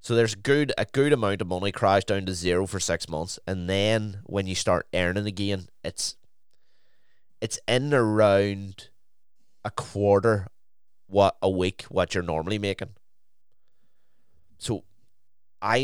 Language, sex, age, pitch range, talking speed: English, male, 20-39, 90-110 Hz, 140 wpm